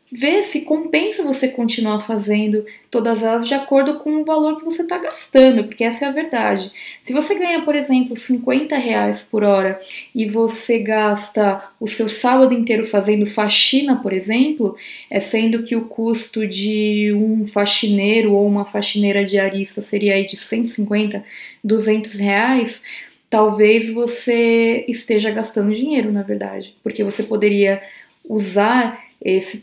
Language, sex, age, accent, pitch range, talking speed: Portuguese, female, 20-39, Brazilian, 210-255 Hz, 145 wpm